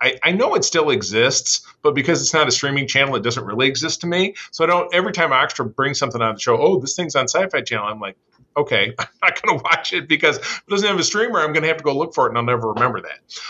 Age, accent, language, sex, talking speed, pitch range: 40-59, American, English, male, 295 wpm, 115-160 Hz